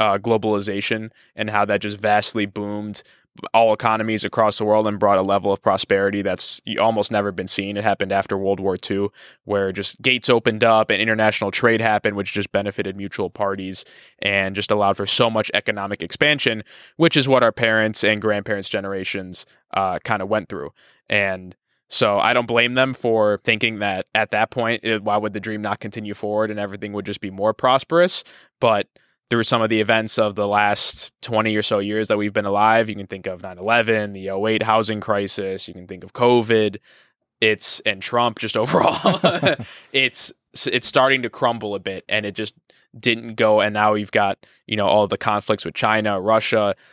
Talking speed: 195 wpm